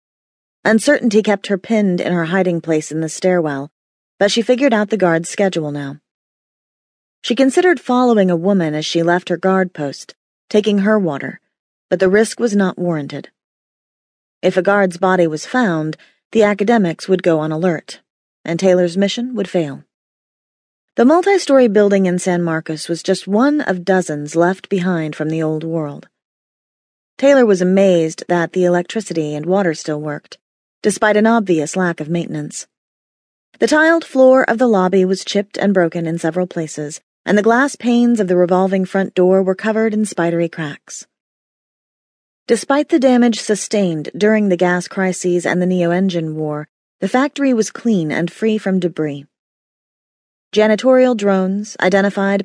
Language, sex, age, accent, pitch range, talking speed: English, female, 30-49, American, 165-215 Hz, 160 wpm